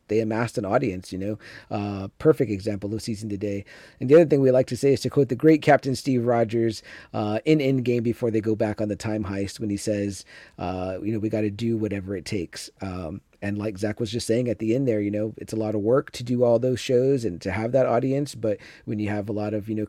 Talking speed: 265 wpm